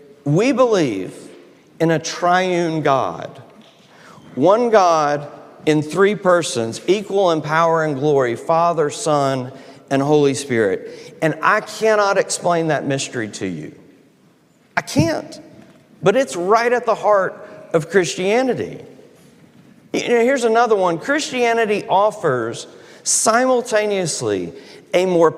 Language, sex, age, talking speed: English, male, 50-69, 115 wpm